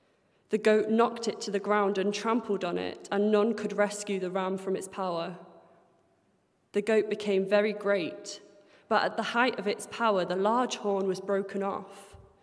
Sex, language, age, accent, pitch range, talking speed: female, English, 20-39, British, 195-215 Hz, 185 wpm